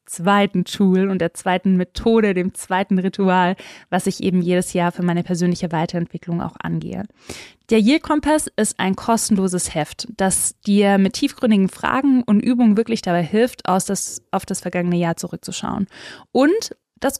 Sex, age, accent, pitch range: female, 20-39, German, 180-215 Hz